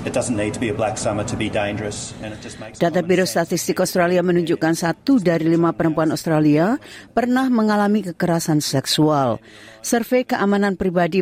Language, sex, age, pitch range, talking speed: Indonesian, female, 40-59, 150-185 Hz, 90 wpm